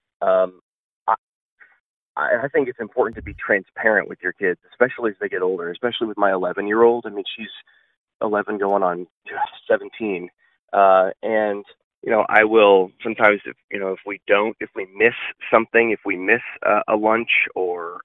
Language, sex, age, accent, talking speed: English, male, 30-49, American, 175 wpm